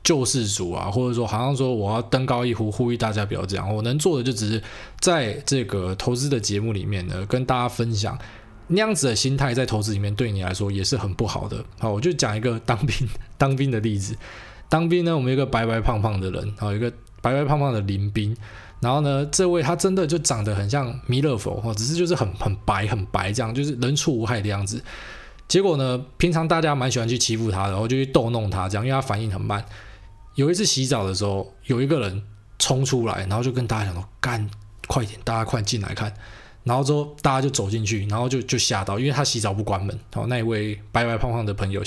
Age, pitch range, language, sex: 20-39, 105-130 Hz, Chinese, male